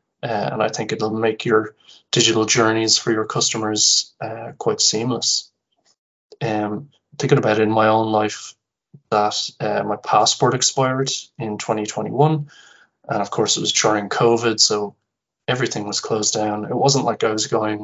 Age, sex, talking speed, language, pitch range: 20-39, male, 160 wpm, English, 110-120 Hz